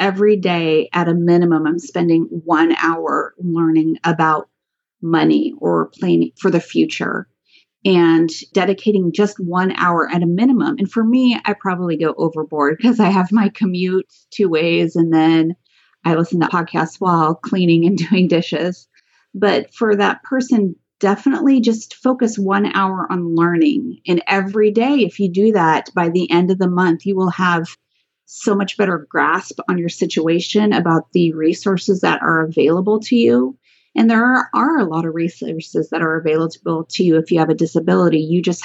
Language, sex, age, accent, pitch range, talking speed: English, female, 30-49, American, 165-200 Hz, 175 wpm